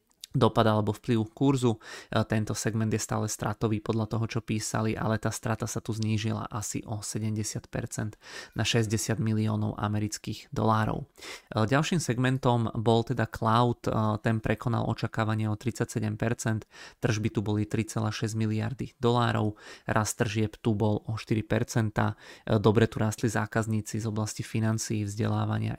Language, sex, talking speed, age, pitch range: Czech, male, 135 wpm, 20-39, 105-115 Hz